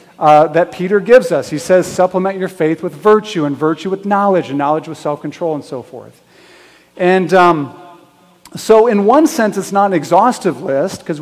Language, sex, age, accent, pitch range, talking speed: English, male, 40-59, American, 145-185 Hz, 185 wpm